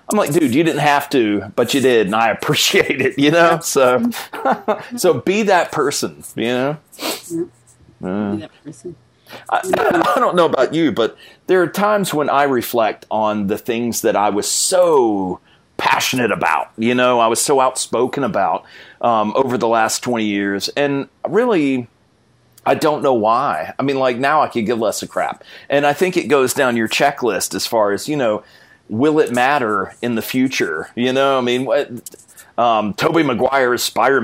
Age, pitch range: 30-49, 125-175 Hz